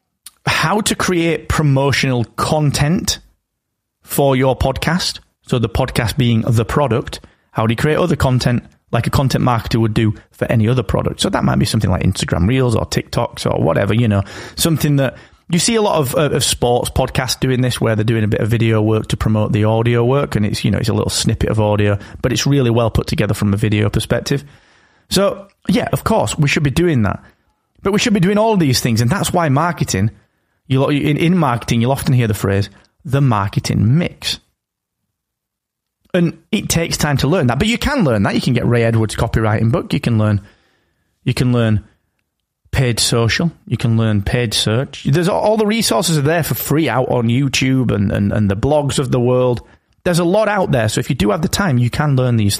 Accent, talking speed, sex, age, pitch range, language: British, 220 wpm, male, 30-49, 110-150 Hz, English